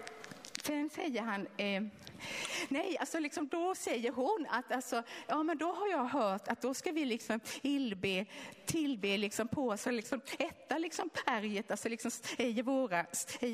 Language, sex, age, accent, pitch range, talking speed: Swedish, female, 30-49, native, 220-310 Hz, 160 wpm